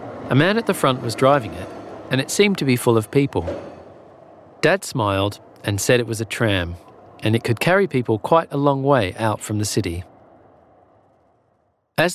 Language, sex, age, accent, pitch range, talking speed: English, male, 40-59, Australian, 105-160 Hz, 190 wpm